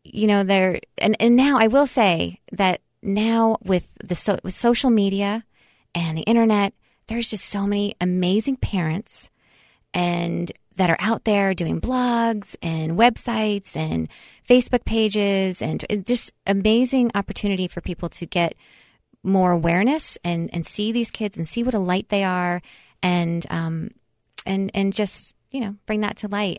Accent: American